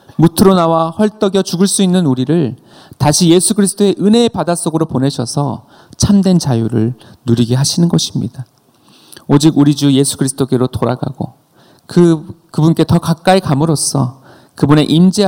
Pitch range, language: 130-180 Hz, Korean